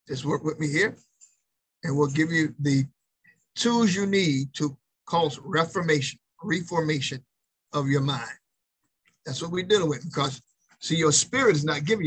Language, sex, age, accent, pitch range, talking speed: English, male, 50-69, American, 145-175 Hz, 160 wpm